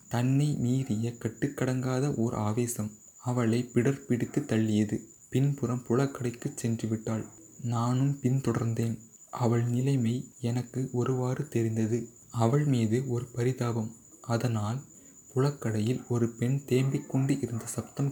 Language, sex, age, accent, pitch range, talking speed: Tamil, male, 30-49, native, 115-130 Hz, 95 wpm